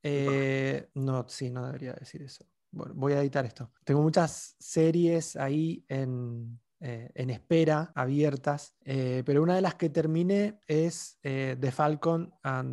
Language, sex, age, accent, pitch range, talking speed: Spanish, male, 20-39, Argentinian, 130-165 Hz, 155 wpm